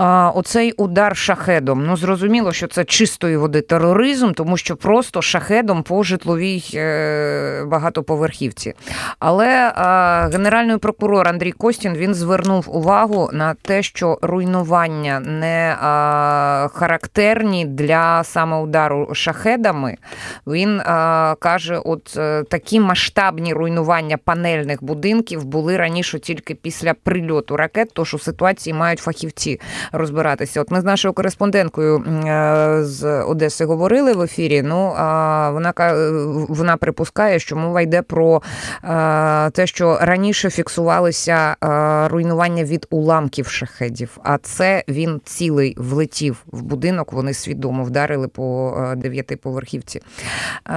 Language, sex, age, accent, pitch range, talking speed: Ukrainian, female, 20-39, native, 150-180 Hz, 115 wpm